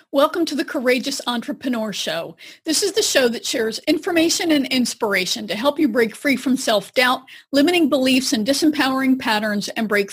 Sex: female